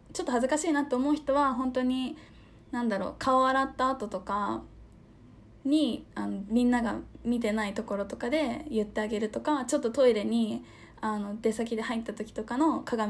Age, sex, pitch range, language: 20-39, female, 210-270 Hz, Japanese